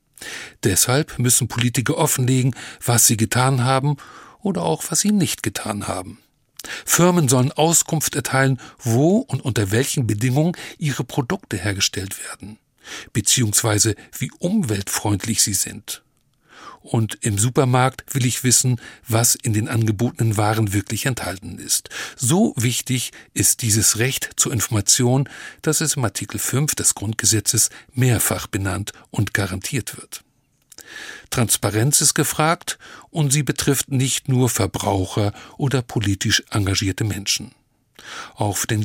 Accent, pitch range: German, 110-135 Hz